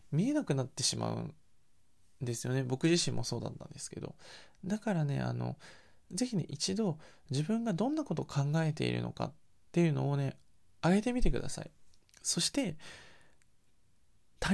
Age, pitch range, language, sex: 20-39, 130-190 Hz, Japanese, male